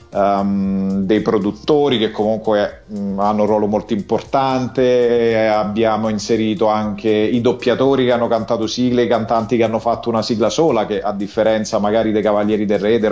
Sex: male